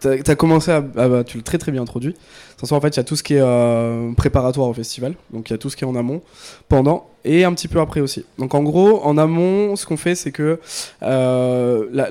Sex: male